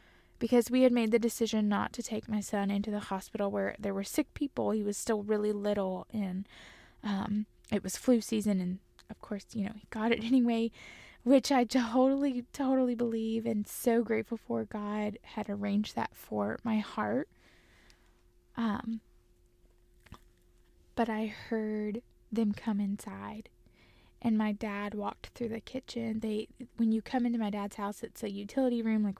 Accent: American